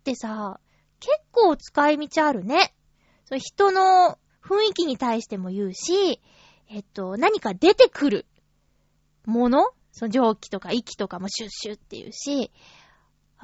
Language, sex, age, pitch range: Japanese, female, 20-39, 205-320 Hz